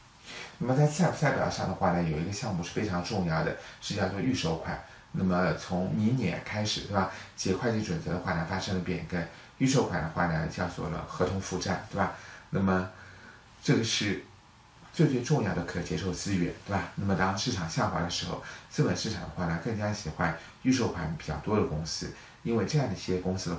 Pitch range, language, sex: 85-115 Hz, Chinese, male